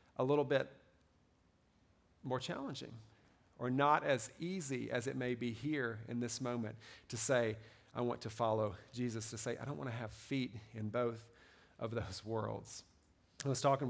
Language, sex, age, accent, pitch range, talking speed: English, male, 40-59, American, 120-170 Hz, 175 wpm